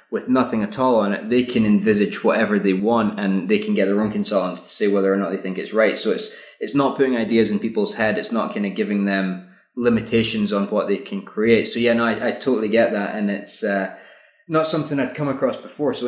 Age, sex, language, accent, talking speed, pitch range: 20-39, male, English, British, 250 wpm, 105-135 Hz